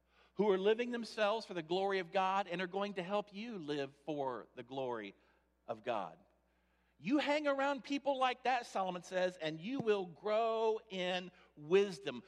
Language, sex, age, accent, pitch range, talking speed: English, male, 50-69, American, 140-230 Hz, 170 wpm